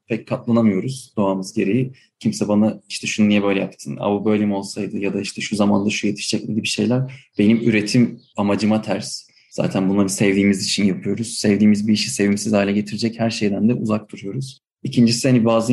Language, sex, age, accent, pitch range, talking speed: Turkish, male, 30-49, native, 100-125 Hz, 190 wpm